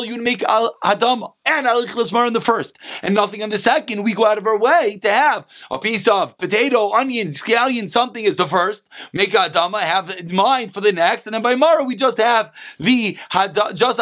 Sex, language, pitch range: male, English, 210-275 Hz